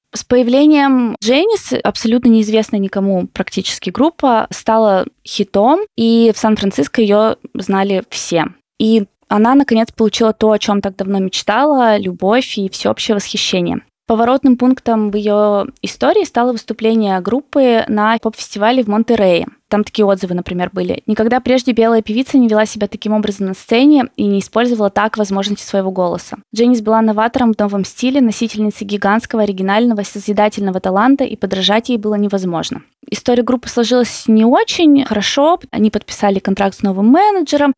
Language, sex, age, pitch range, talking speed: Russian, female, 20-39, 200-245 Hz, 150 wpm